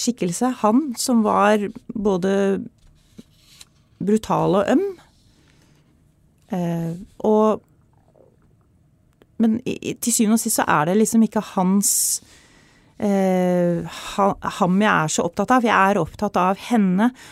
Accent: Swedish